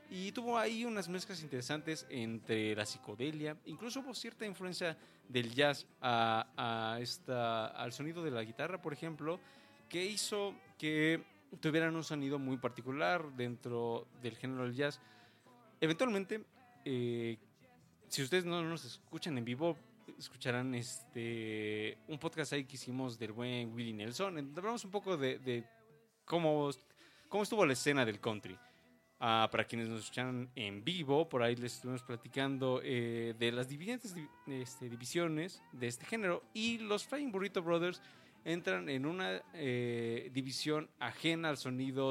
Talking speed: 150 wpm